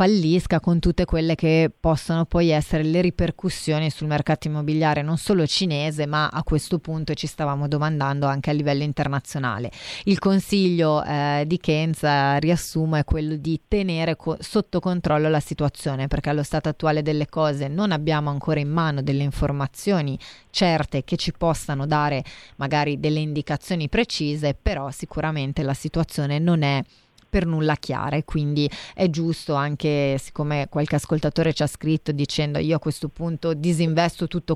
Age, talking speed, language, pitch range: 30-49, 155 wpm, Italian, 145-165 Hz